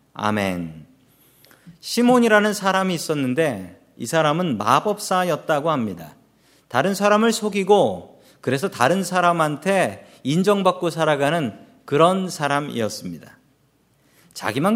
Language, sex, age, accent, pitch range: Korean, male, 40-59, native, 145-210 Hz